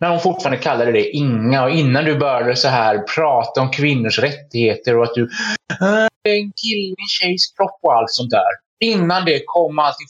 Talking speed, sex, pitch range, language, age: 190 wpm, male, 130-205 Hz, Swedish, 20-39